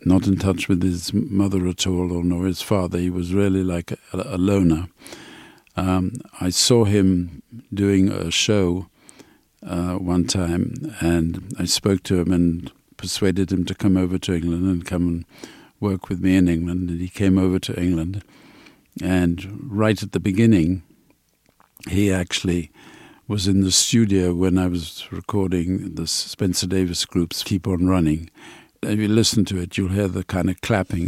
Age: 50-69